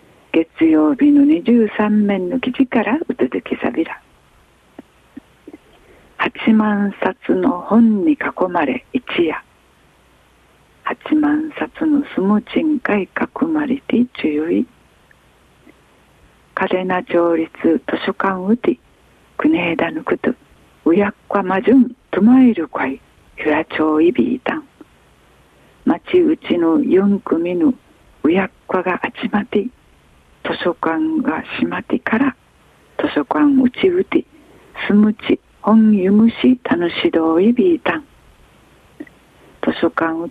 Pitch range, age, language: 195-290 Hz, 50-69, Japanese